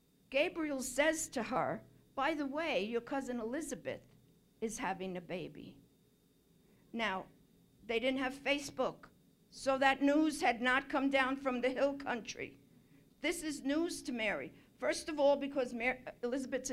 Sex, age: female, 60-79